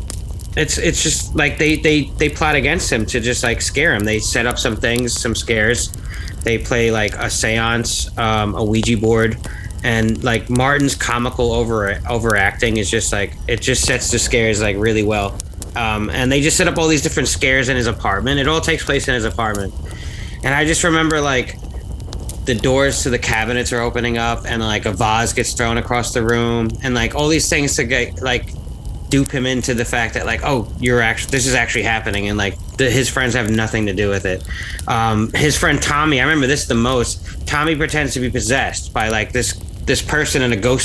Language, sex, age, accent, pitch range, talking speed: English, male, 30-49, American, 105-130 Hz, 210 wpm